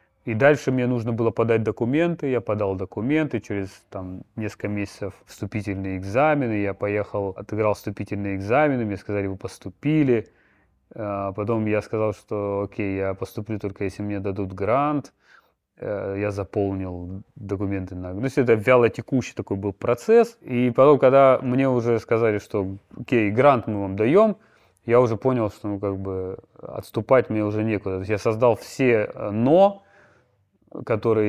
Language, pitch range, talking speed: Russian, 95-120 Hz, 140 wpm